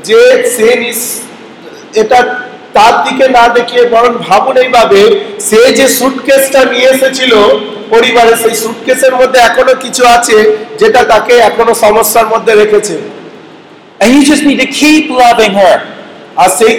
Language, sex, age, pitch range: Bengali, male, 50-69, 190-245 Hz